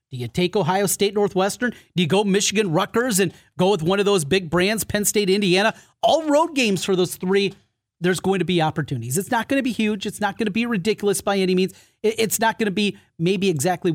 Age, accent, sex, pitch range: 30-49, American, male, 160-205 Hz